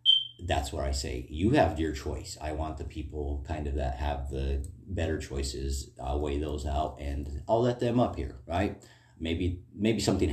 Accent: American